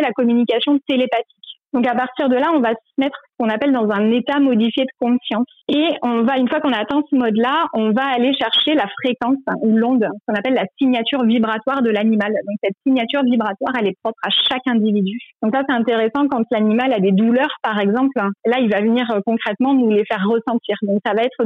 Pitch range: 215-260 Hz